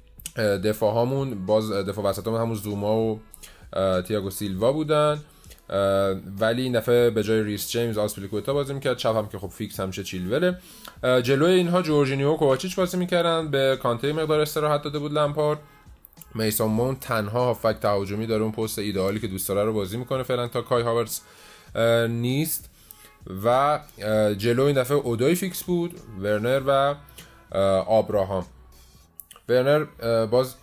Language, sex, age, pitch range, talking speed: Persian, male, 20-39, 100-130 Hz, 135 wpm